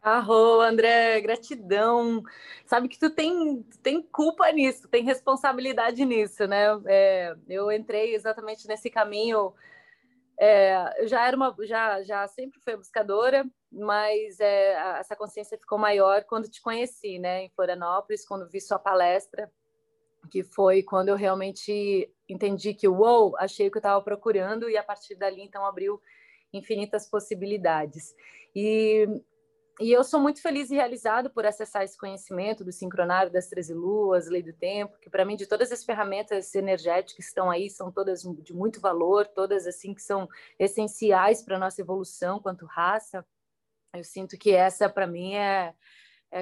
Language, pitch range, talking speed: Portuguese, 190-230 Hz, 160 wpm